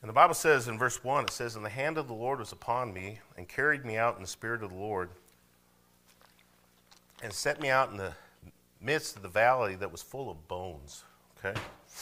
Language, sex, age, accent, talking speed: English, male, 50-69, American, 220 wpm